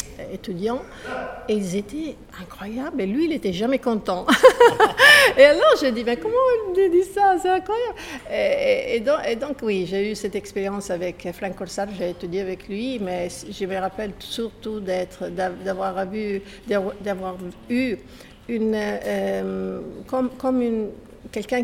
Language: French